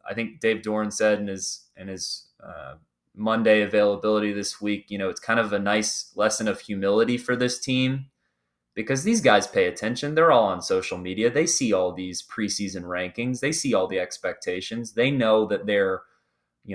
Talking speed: 190 wpm